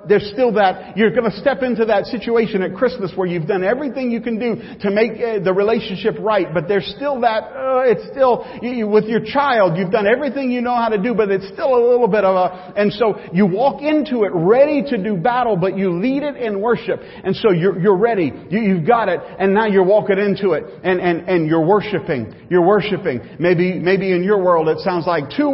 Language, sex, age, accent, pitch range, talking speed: English, male, 40-59, American, 175-240 Hz, 235 wpm